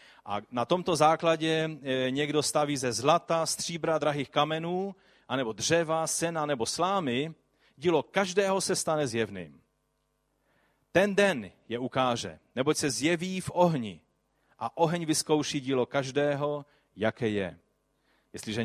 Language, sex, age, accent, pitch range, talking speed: Czech, male, 40-59, native, 115-160 Hz, 120 wpm